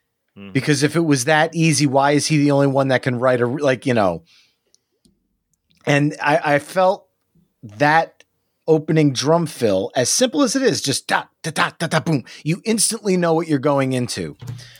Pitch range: 125-155 Hz